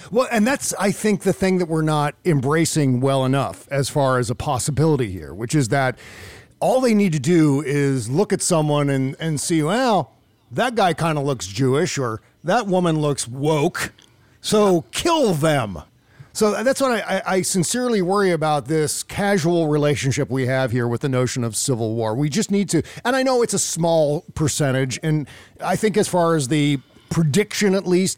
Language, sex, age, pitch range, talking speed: English, male, 40-59, 135-180 Hz, 195 wpm